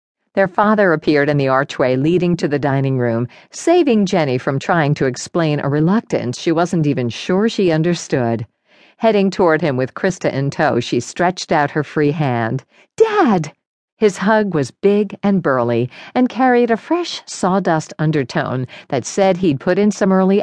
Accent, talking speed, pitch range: American, 170 wpm, 140-205 Hz